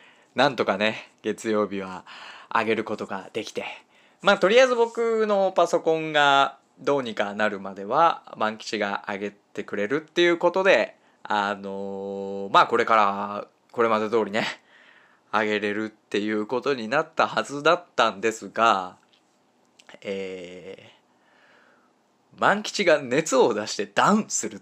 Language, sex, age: Japanese, male, 20-39